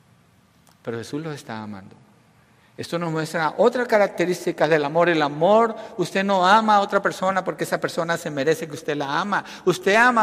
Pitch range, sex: 145-205 Hz, male